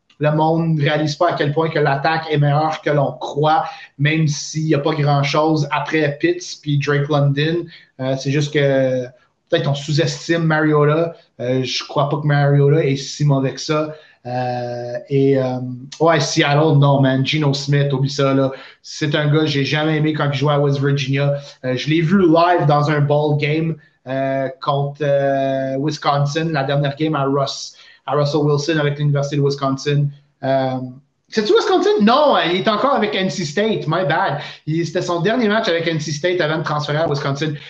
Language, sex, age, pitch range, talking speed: French, male, 30-49, 140-165 Hz, 190 wpm